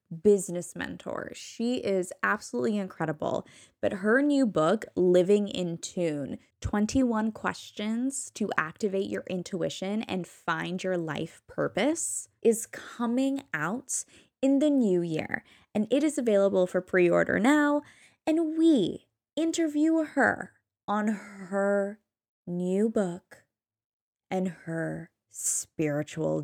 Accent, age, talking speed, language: American, 10-29, 110 wpm, English